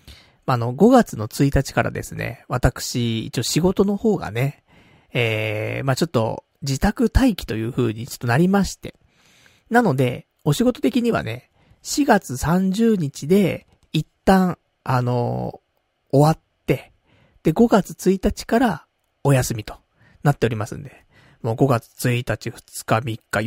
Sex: male